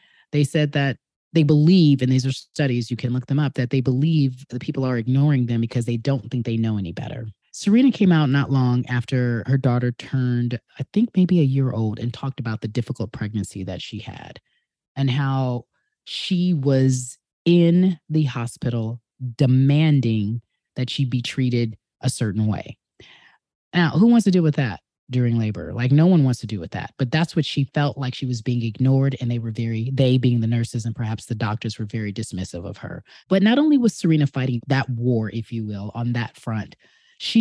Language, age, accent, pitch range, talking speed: English, 30-49, American, 120-150 Hz, 205 wpm